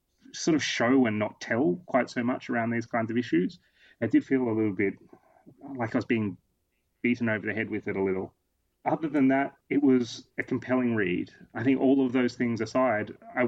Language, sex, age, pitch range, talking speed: English, male, 30-49, 100-125 Hz, 215 wpm